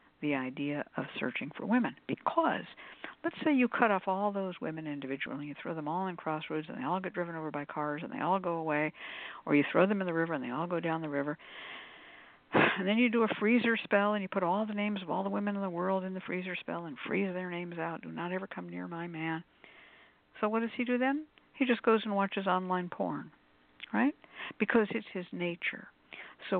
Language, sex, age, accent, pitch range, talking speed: English, female, 60-79, American, 150-205 Hz, 235 wpm